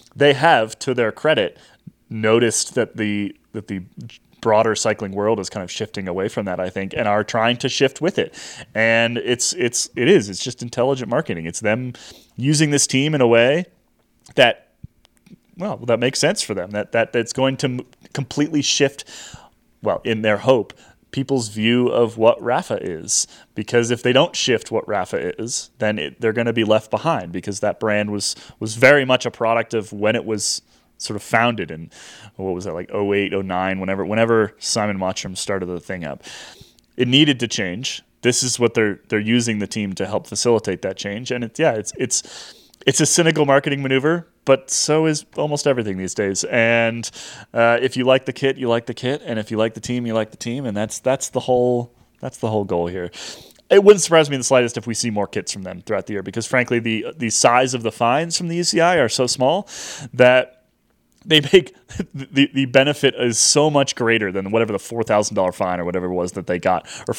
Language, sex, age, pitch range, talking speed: English, male, 20-39, 105-130 Hz, 210 wpm